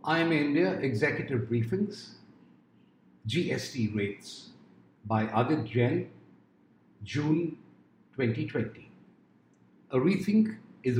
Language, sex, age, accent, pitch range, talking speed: English, male, 50-69, Indian, 115-170 Hz, 80 wpm